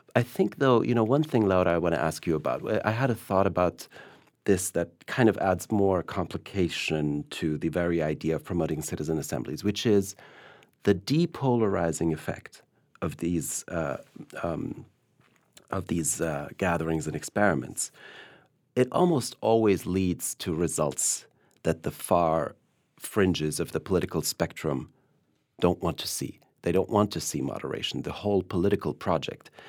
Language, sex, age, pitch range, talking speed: English, male, 40-59, 85-110 Hz, 155 wpm